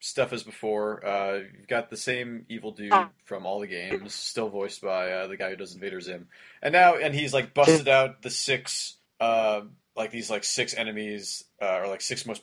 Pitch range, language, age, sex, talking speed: 105-140 Hz, English, 30-49, male, 210 wpm